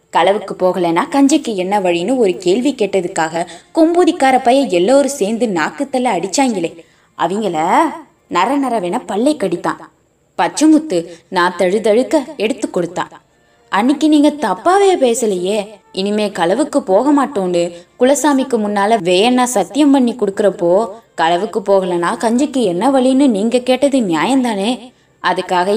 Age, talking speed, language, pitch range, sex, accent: 20-39, 110 wpm, Tamil, 185-280 Hz, female, native